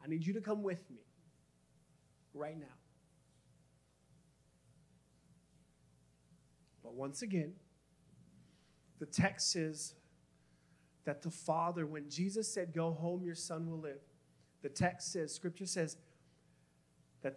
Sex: male